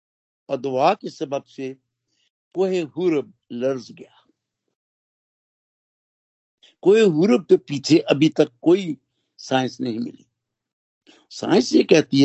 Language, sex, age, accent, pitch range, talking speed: Hindi, male, 60-79, native, 135-175 Hz, 90 wpm